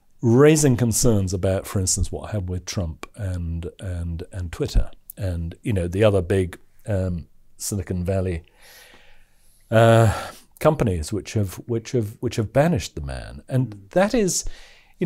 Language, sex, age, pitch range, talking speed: English, male, 40-59, 95-130 Hz, 150 wpm